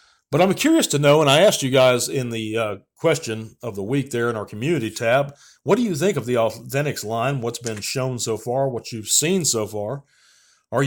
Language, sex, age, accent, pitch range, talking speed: English, male, 40-59, American, 110-150 Hz, 225 wpm